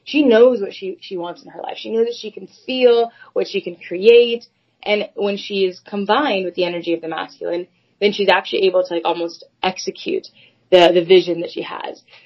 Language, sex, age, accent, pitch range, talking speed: English, female, 20-39, American, 180-215 Hz, 215 wpm